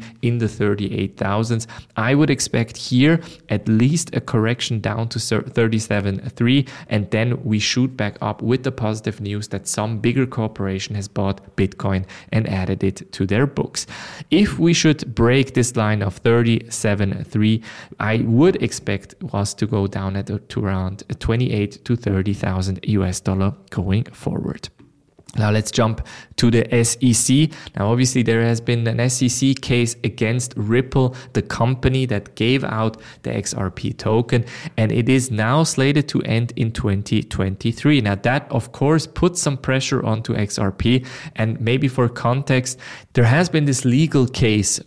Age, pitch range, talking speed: 20-39, 105-125 Hz, 150 wpm